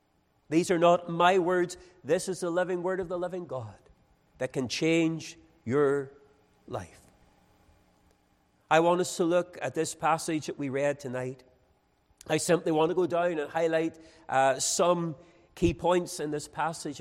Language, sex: English, male